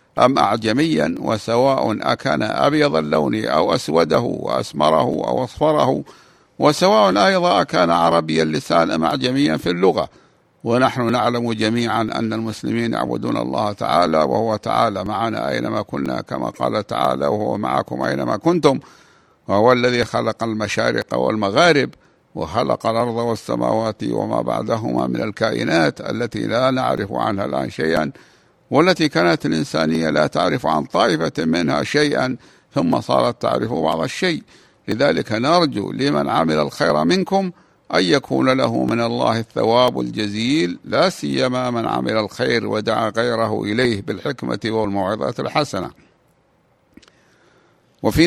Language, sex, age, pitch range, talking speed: Arabic, male, 60-79, 100-130 Hz, 120 wpm